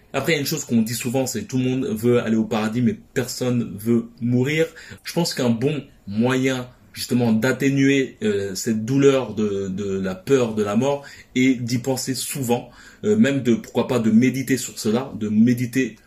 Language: French